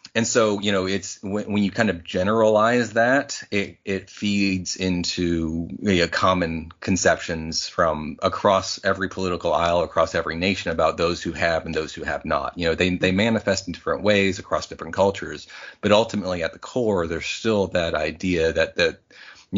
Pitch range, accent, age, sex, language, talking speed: 85-105 Hz, American, 30-49, male, English, 185 wpm